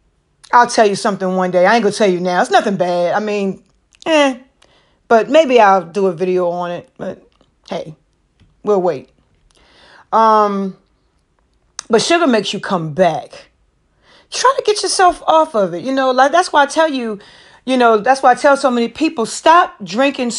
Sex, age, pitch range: female, 40-59, 190-275 Hz